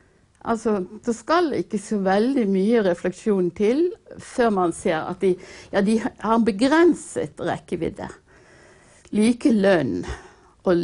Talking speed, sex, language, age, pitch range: 115 wpm, female, English, 60-79, 180-245 Hz